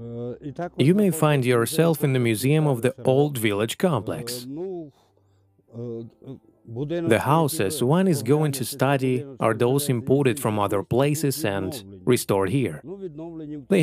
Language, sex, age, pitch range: Ukrainian, male, 30-49, 115-155 Hz